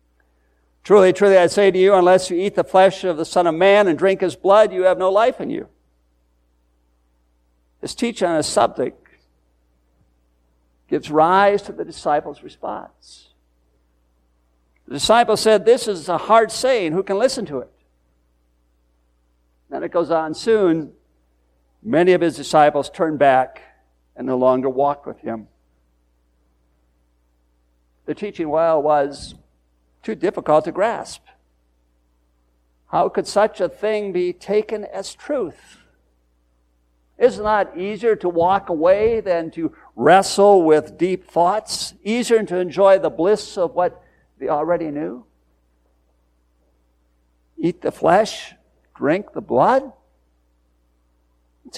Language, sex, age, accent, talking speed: English, male, 60-79, American, 135 wpm